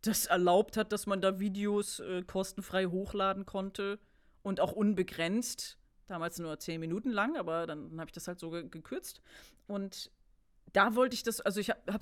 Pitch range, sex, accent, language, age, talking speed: 180-230 Hz, female, German, German, 40-59, 180 wpm